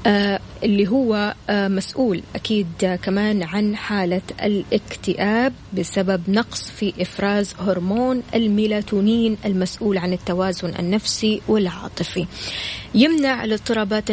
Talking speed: 90 wpm